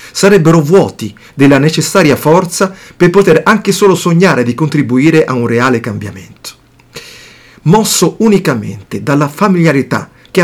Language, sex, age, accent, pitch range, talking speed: Italian, male, 40-59, native, 120-155 Hz, 120 wpm